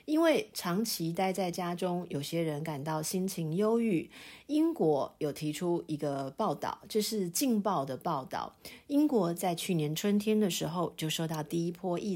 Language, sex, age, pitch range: Chinese, female, 40-59, 155-210 Hz